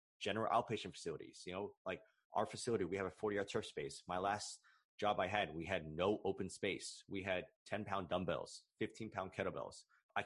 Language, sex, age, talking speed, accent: English, male, 30-49, 200 wpm, American